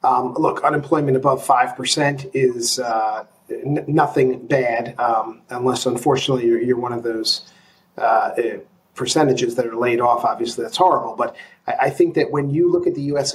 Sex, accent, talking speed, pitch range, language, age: male, American, 165 wpm, 130-170 Hz, English, 40-59